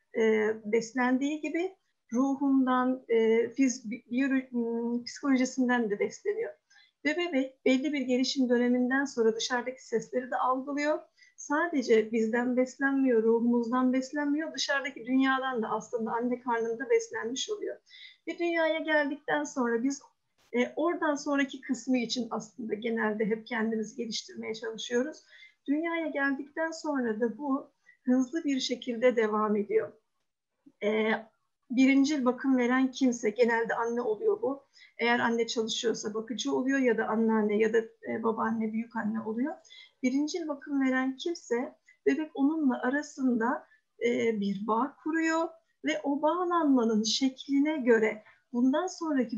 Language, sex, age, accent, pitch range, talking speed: Turkish, female, 50-69, native, 230-290 Hz, 125 wpm